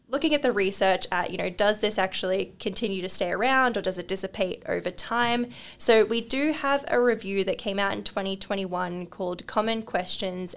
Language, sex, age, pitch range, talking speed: English, female, 10-29, 185-225 Hz, 195 wpm